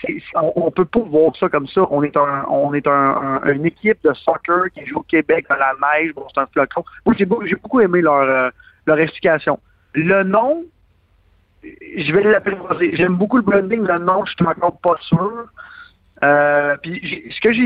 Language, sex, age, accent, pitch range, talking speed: French, male, 50-69, French, 150-210 Hz, 215 wpm